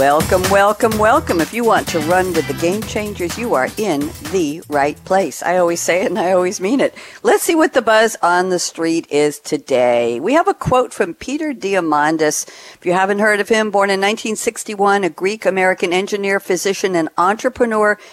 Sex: female